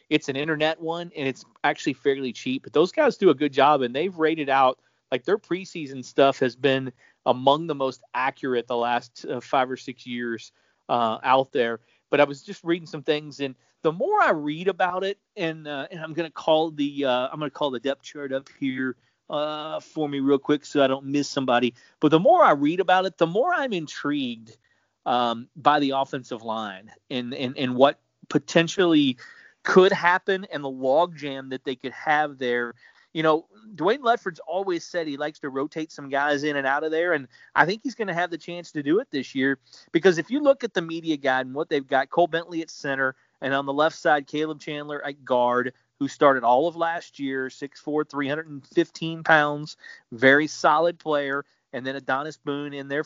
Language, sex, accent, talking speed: English, male, American, 215 wpm